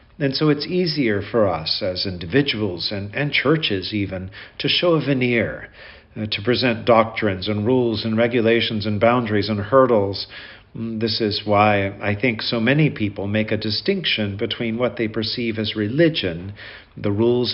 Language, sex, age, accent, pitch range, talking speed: English, male, 50-69, American, 105-130 Hz, 160 wpm